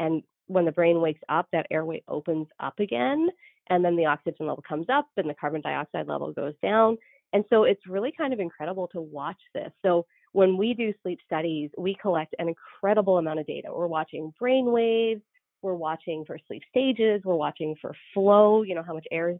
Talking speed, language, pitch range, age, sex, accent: 205 wpm, English, 165-225 Hz, 30-49, female, American